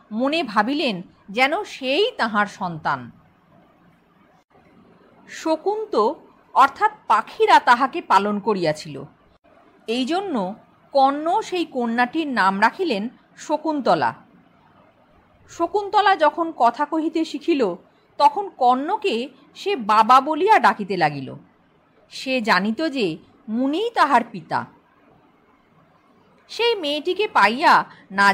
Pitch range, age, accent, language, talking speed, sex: 225-355 Hz, 50-69, native, Bengali, 90 wpm, female